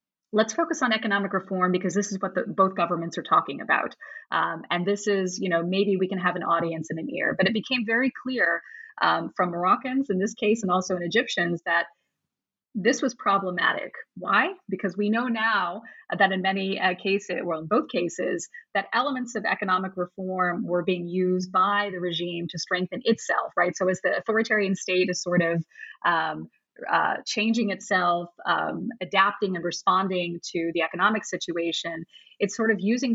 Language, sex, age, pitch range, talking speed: English, female, 30-49, 180-225 Hz, 185 wpm